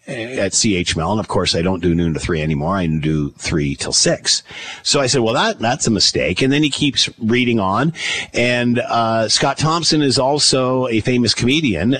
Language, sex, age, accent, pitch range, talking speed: English, male, 50-69, American, 115-145 Hz, 200 wpm